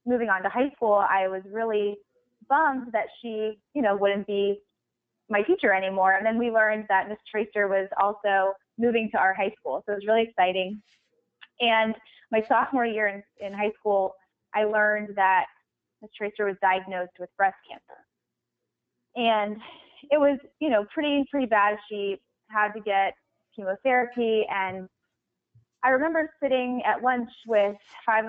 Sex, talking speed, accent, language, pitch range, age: female, 160 wpm, American, English, 195-240 Hz, 20-39